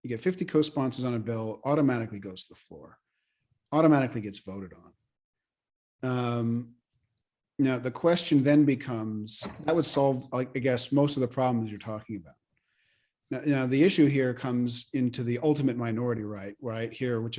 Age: 40-59